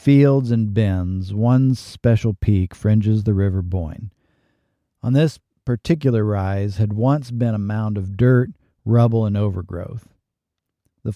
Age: 50-69